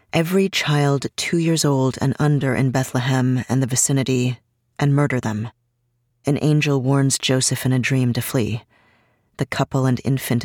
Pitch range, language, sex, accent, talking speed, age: 120-135 Hz, English, female, American, 160 wpm, 30-49